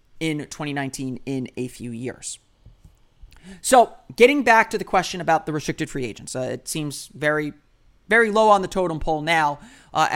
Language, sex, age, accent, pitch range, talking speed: English, male, 30-49, American, 135-195 Hz, 170 wpm